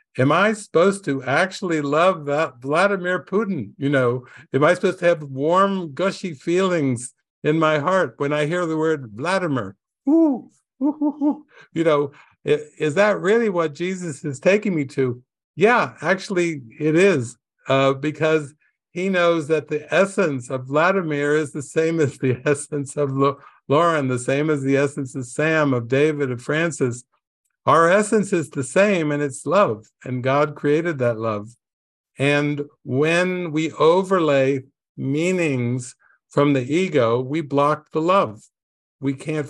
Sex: male